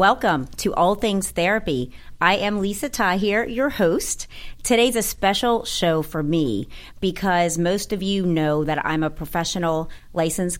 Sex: female